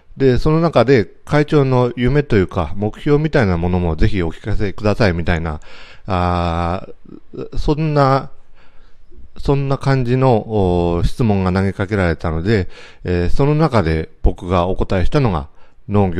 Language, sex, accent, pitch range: Japanese, male, native, 90-115 Hz